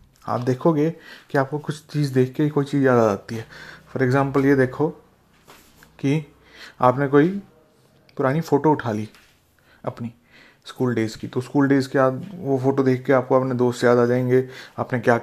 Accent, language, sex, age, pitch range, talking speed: native, Hindi, male, 30-49, 125-150 Hz, 185 wpm